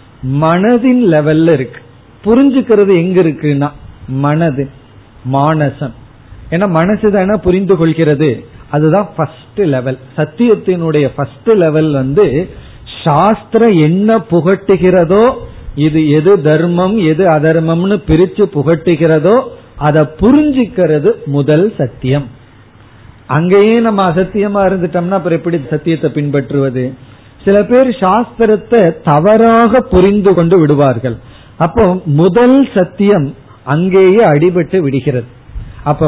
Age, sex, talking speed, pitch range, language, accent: 40-59, male, 80 wpm, 135-195 Hz, Tamil, native